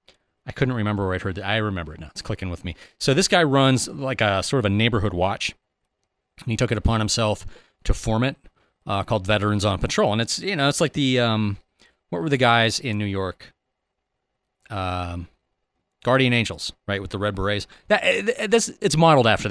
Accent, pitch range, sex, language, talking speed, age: American, 95-130 Hz, male, English, 210 wpm, 30-49